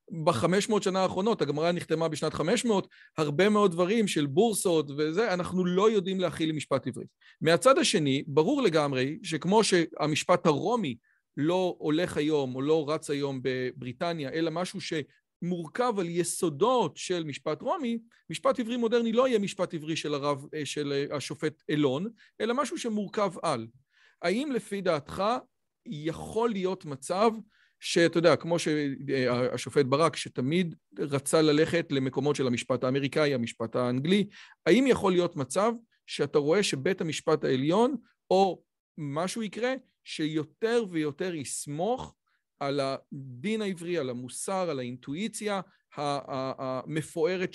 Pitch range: 145-190 Hz